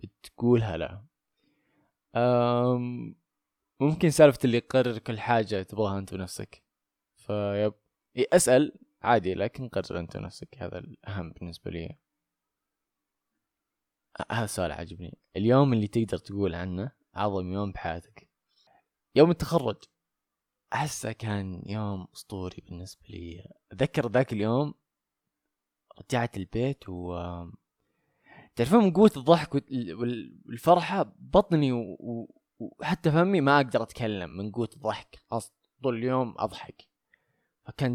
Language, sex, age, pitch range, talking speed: Arabic, male, 20-39, 95-130 Hz, 110 wpm